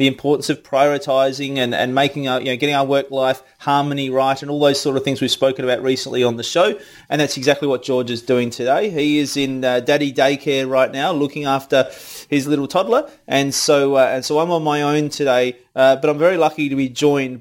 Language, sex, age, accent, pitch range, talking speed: English, male, 30-49, Australian, 130-155 Hz, 230 wpm